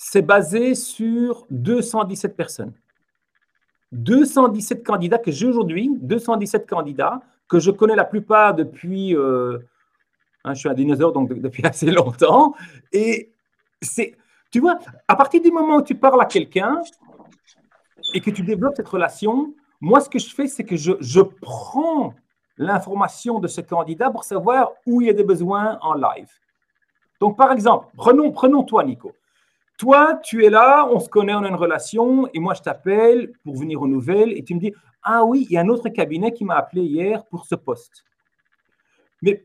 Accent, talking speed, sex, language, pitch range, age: French, 175 wpm, male, French, 175-255 Hz, 50-69